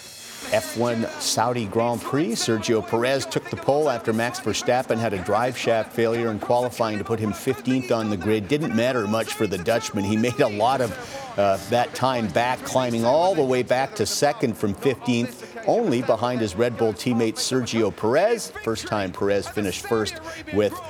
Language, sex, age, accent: English, male, 50-69, American